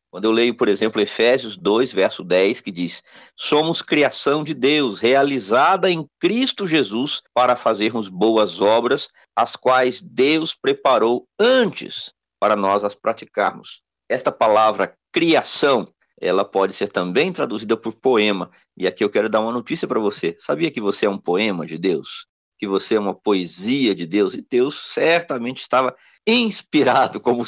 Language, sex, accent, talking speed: Portuguese, male, Brazilian, 155 wpm